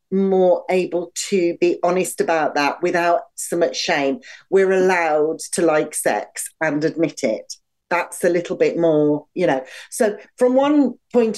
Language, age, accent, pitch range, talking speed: English, 40-59, British, 165-220 Hz, 160 wpm